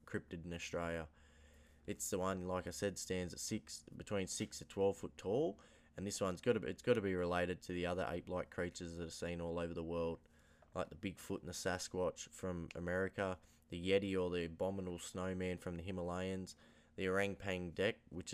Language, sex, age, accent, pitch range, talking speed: English, male, 20-39, Australian, 85-95 Hz, 205 wpm